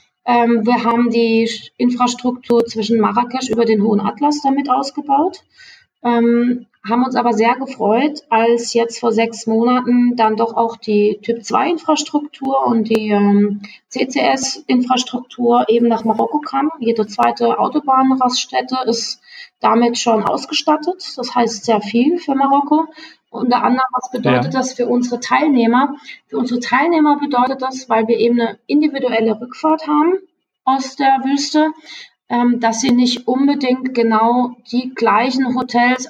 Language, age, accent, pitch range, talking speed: German, 30-49, German, 225-270 Hz, 135 wpm